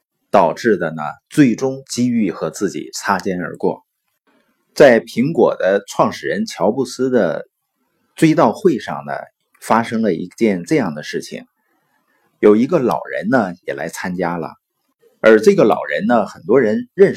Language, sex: Chinese, male